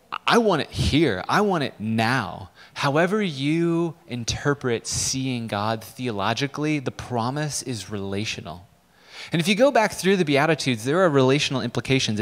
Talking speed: 145 wpm